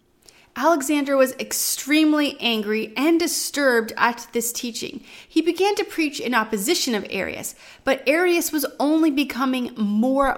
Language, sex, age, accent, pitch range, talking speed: English, female, 30-49, American, 235-315 Hz, 135 wpm